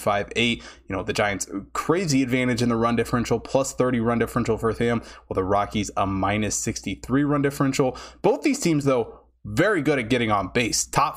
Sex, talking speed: male, 200 wpm